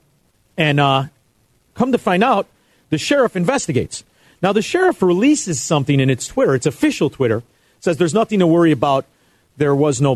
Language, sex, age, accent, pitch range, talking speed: English, male, 50-69, American, 125-180 Hz, 170 wpm